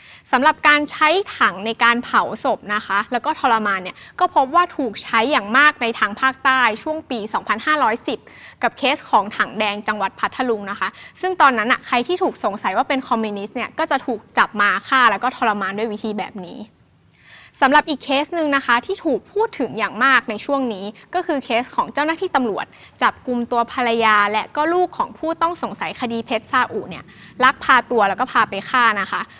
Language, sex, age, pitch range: English, female, 20-39, 225-295 Hz